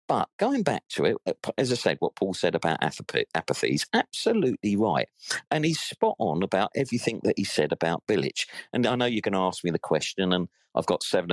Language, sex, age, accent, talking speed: English, male, 50-69, British, 215 wpm